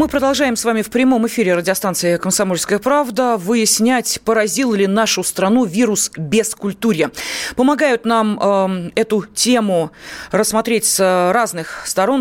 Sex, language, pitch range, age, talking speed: female, Russian, 185-235 Hz, 30-49, 135 wpm